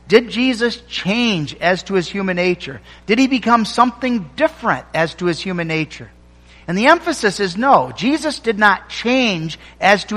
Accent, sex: American, male